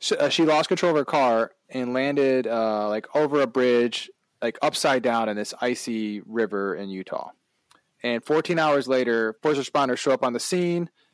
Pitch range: 105-130 Hz